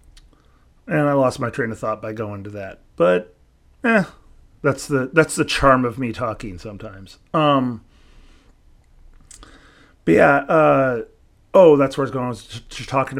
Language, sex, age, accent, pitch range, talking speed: English, male, 30-49, American, 110-135 Hz, 160 wpm